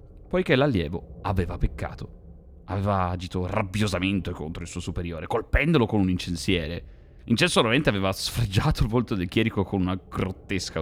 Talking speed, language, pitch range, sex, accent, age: 140 wpm, Italian, 80-100 Hz, male, native, 30-49